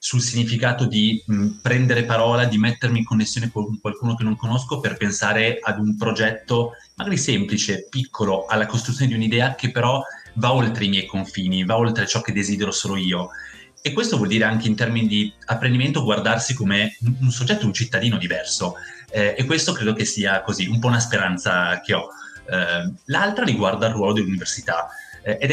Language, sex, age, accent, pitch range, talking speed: Italian, male, 30-49, native, 105-130 Hz, 180 wpm